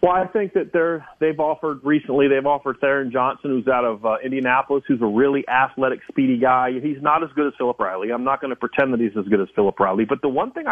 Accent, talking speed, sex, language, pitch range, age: American, 260 wpm, male, English, 125-165 Hz, 40-59